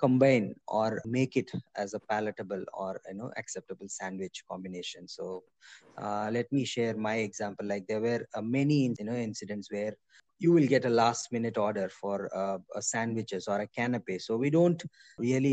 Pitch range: 105-125 Hz